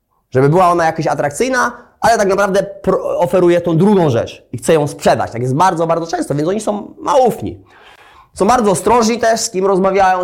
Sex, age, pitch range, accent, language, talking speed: male, 20-39, 150-190 Hz, native, Polish, 200 wpm